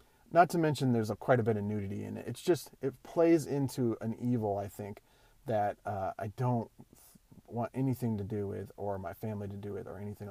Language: English